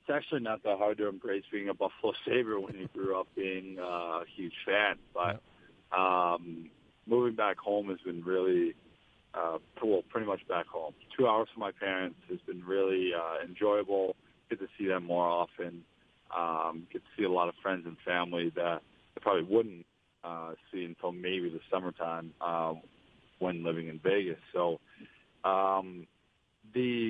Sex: male